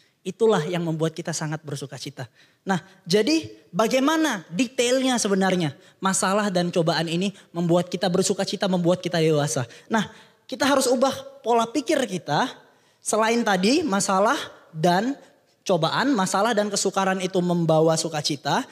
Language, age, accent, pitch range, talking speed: Indonesian, 20-39, native, 170-225 Hz, 125 wpm